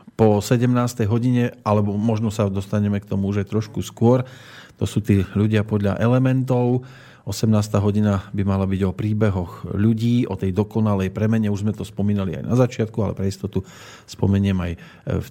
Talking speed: 170 wpm